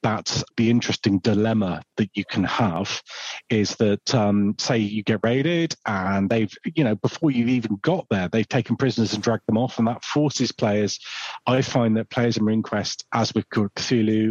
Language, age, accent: English, 40-59, British